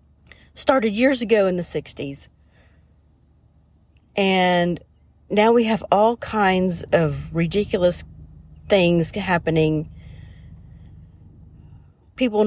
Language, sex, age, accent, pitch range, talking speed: English, female, 40-59, American, 160-230 Hz, 80 wpm